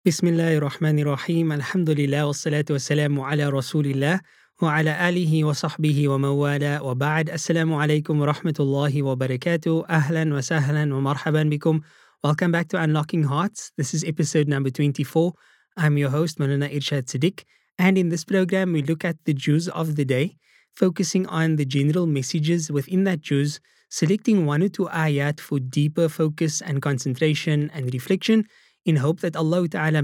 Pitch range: 145-170 Hz